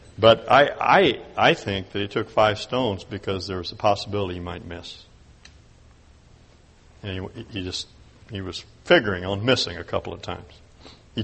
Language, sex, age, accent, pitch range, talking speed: English, male, 60-79, American, 95-110 Hz, 170 wpm